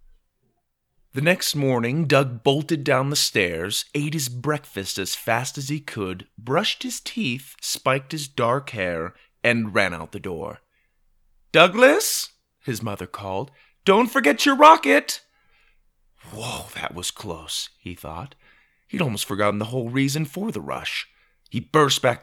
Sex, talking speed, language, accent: male, 145 wpm, English, American